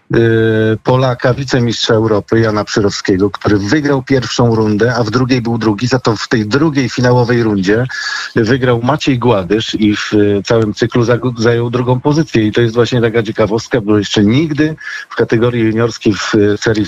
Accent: native